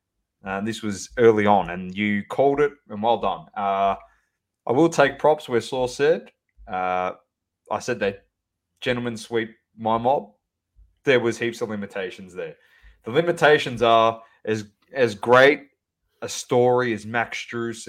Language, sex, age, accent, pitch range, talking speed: English, male, 20-39, Australian, 105-130 Hz, 155 wpm